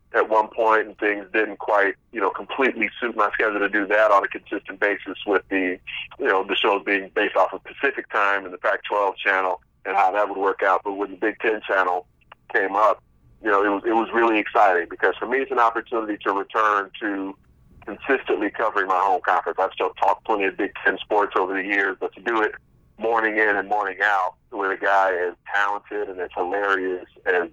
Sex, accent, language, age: male, American, English, 30-49